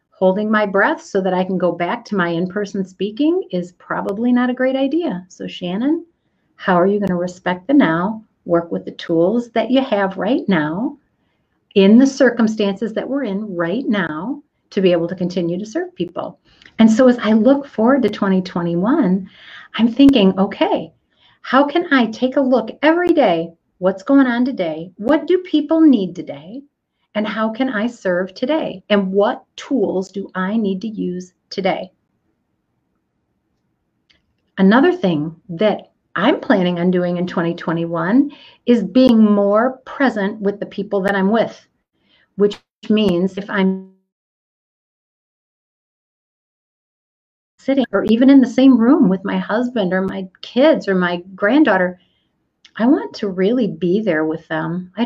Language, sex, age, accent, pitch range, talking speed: English, female, 50-69, American, 185-260 Hz, 155 wpm